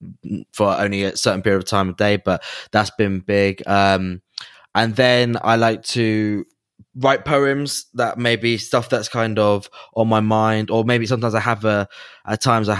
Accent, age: British, 10-29